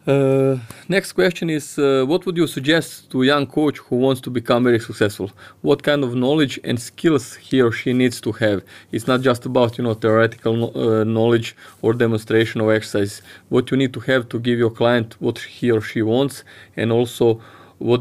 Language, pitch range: Croatian, 110-125 Hz